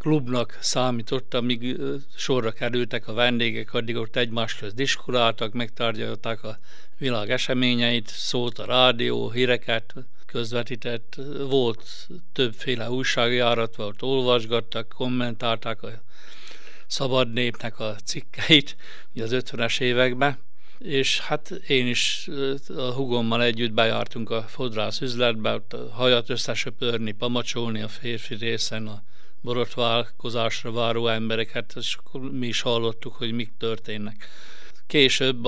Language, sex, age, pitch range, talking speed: Hungarian, male, 60-79, 115-130 Hz, 110 wpm